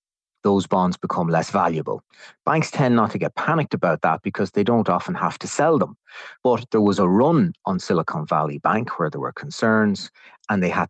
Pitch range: 90-120 Hz